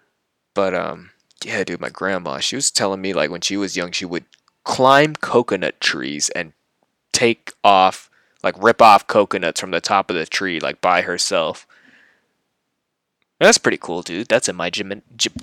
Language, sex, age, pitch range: English, male, 20-39, 95-110 Hz